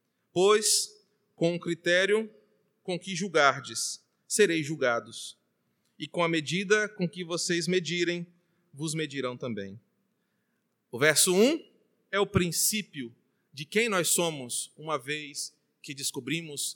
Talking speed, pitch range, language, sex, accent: 120 wpm, 150-210 Hz, Portuguese, male, Brazilian